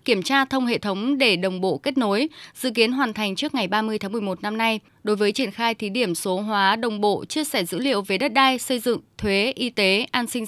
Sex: female